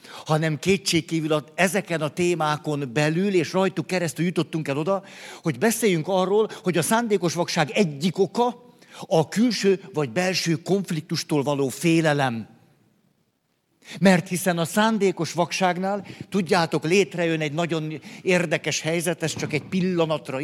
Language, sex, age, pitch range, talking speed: Hungarian, male, 50-69, 150-185 Hz, 125 wpm